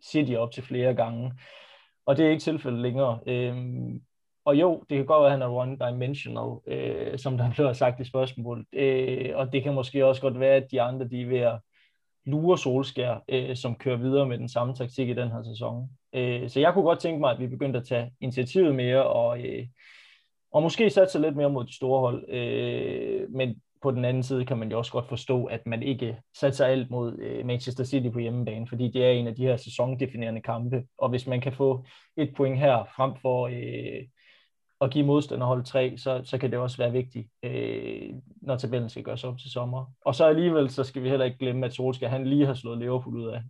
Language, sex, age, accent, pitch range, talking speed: Danish, male, 20-39, native, 120-135 Hz, 220 wpm